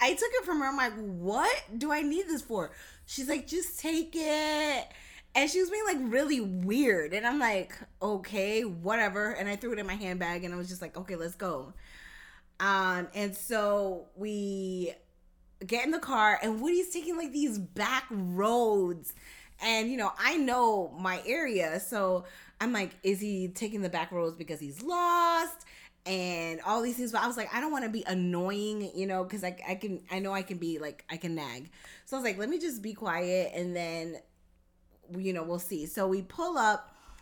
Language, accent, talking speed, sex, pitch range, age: English, American, 205 wpm, female, 170-230 Hz, 20-39